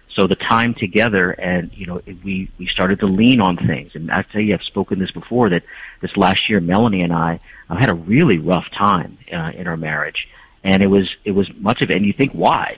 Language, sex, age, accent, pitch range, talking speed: English, male, 40-59, American, 90-105 Hz, 240 wpm